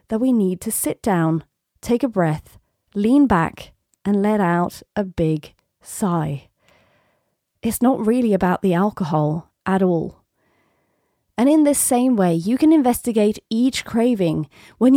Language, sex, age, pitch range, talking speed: English, female, 30-49, 185-265 Hz, 145 wpm